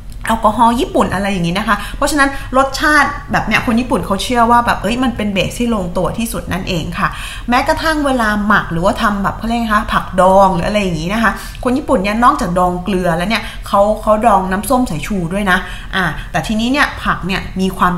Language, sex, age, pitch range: Thai, female, 20-39, 180-240 Hz